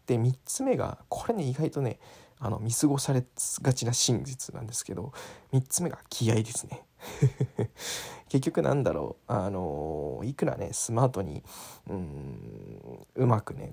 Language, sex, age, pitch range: Japanese, male, 20-39, 110-135 Hz